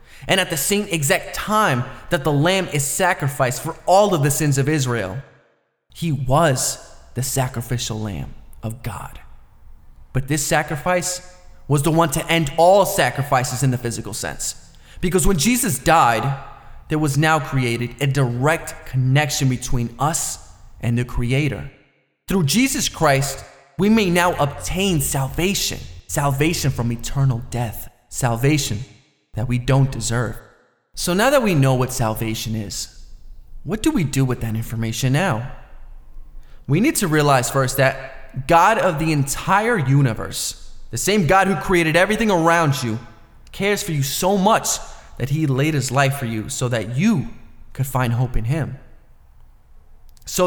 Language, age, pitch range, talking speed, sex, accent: English, 20-39, 125-170 Hz, 150 wpm, male, American